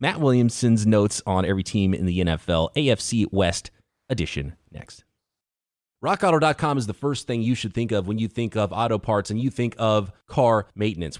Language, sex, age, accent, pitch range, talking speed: English, male, 30-49, American, 110-160 Hz, 180 wpm